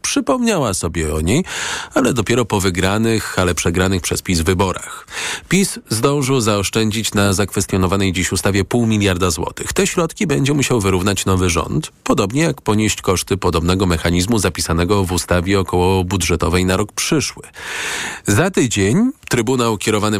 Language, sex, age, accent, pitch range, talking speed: Polish, male, 40-59, native, 90-115 Hz, 145 wpm